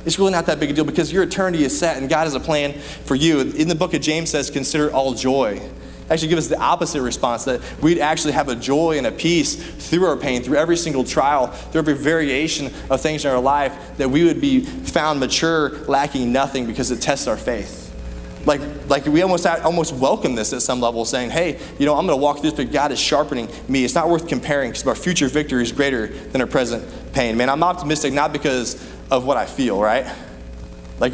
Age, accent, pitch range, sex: 20-39, American, 130-160 Hz, male